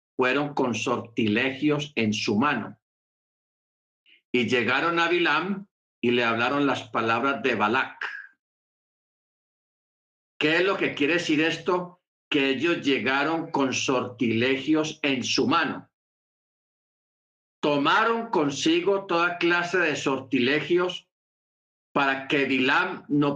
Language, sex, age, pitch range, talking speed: Spanish, male, 50-69, 120-175 Hz, 110 wpm